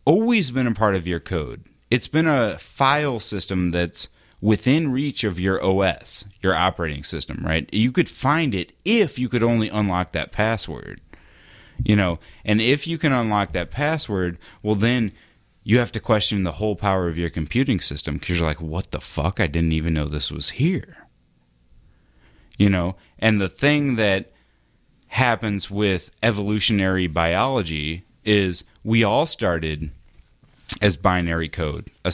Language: English